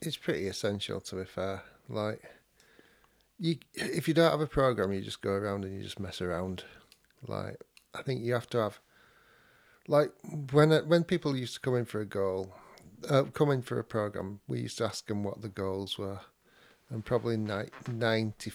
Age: 40-59